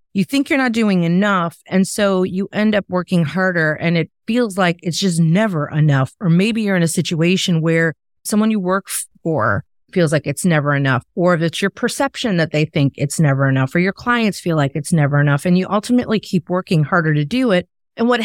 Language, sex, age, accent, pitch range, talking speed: English, female, 30-49, American, 170-225 Hz, 215 wpm